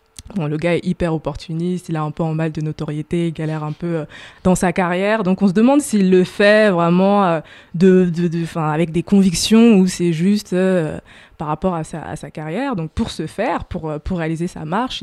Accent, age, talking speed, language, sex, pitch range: French, 20-39, 230 wpm, French, female, 160-200 Hz